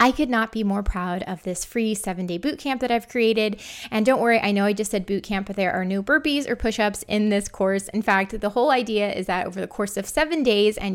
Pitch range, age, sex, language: 195-240 Hz, 20-39, female, English